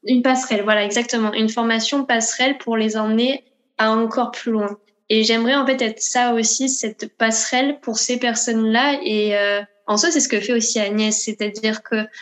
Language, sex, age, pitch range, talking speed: French, female, 10-29, 210-235 Hz, 185 wpm